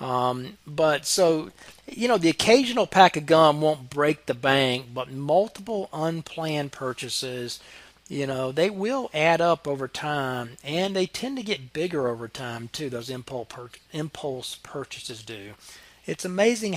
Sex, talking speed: male, 150 wpm